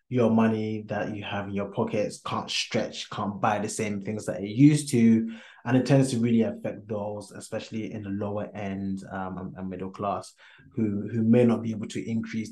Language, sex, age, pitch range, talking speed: English, male, 20-39, 105-120 Hz, 205 wpm